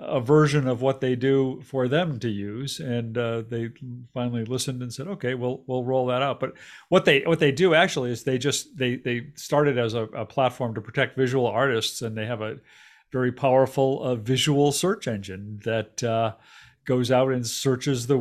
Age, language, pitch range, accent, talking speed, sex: 50-69, English, 110-130 Hz, American, 200 wpm, male